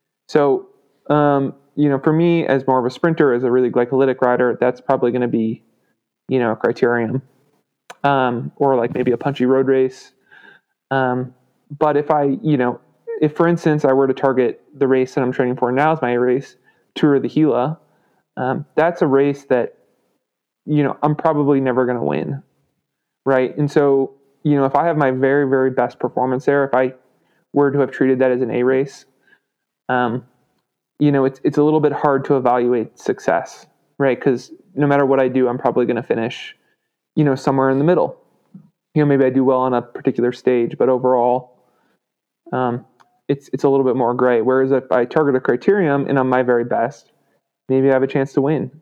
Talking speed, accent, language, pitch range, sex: 205 wpm, American, English, 125-145 Hz, male